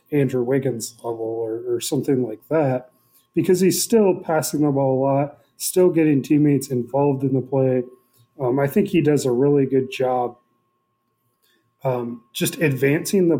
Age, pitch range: 30-49, 130-155 Hz